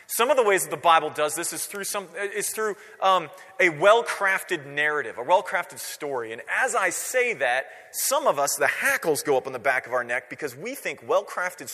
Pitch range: 150-210 Hz